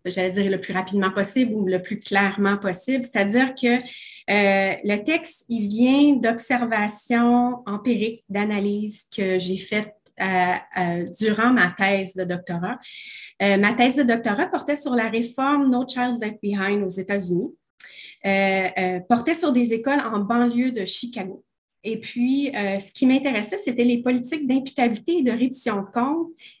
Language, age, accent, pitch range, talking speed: French, 30-49, Canadian, 200-260 Hz, 150 wpm